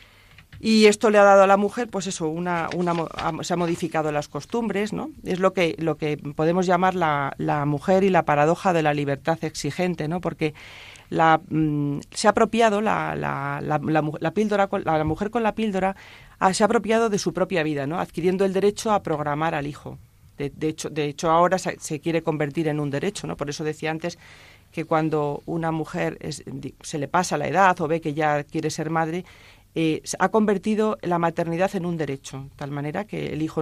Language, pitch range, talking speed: Spanish, 145-190 Hz, 215 wpm